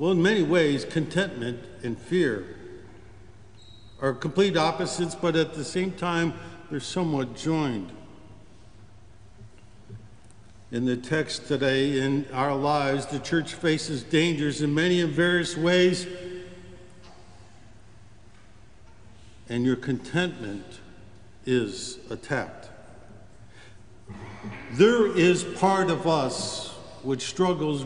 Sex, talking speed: male, 100 wpm